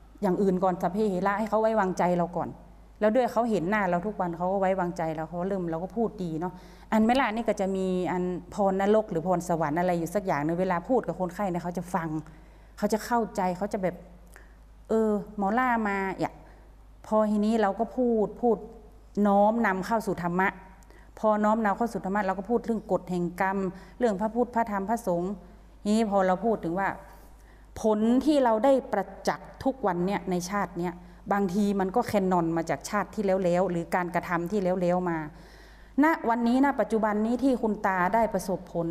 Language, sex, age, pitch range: Thai, female, 30-49, 180-220 Hz